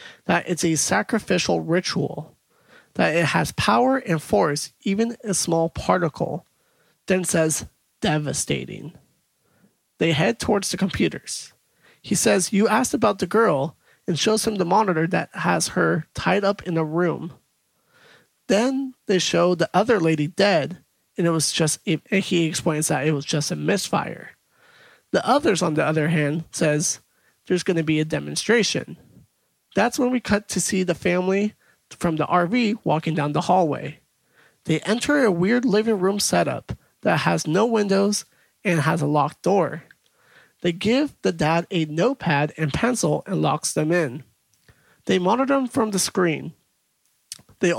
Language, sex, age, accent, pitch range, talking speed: English, male, 30-49, American, 160-210 Hz, 160 wpm